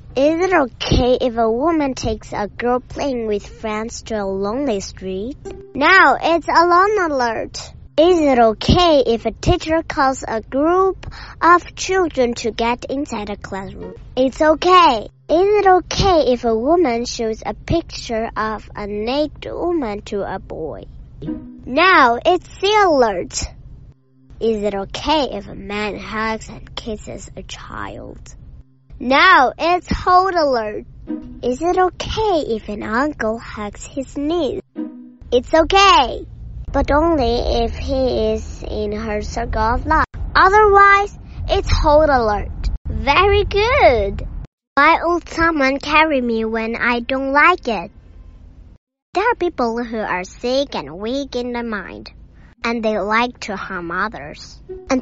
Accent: American